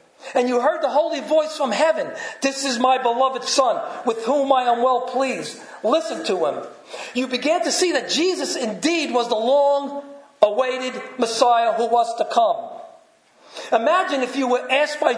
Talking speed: 175 wpm